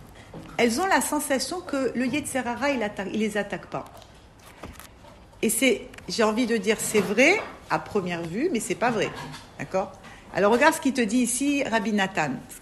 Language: French